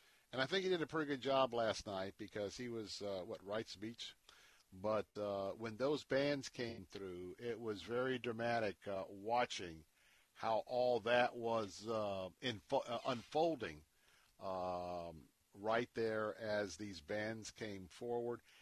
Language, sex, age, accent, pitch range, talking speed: English, male, 50-69, American, 100-125 Hz, 150 wpm